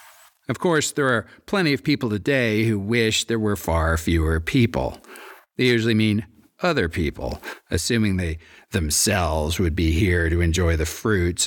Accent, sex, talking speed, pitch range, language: American, male, 155 wpm, 85-110 Hz, English